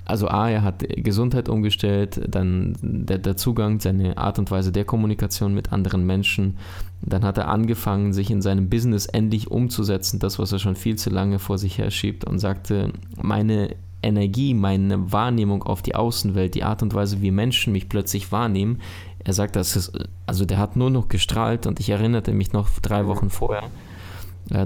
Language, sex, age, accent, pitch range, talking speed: German, male, 20-39, German, 95-110 Hz, 185 wpm